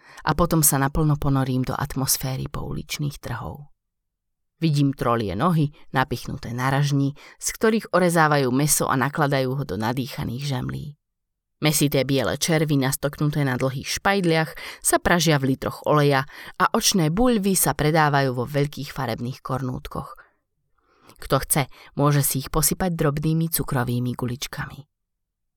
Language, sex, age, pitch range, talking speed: Slovak, female, 30-49, 130-160 Hz, 125 wpm